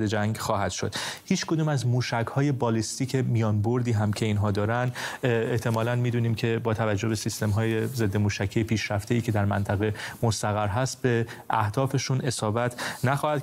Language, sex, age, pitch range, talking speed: English, male, 30-49, 105-120 Hz, 155 wpm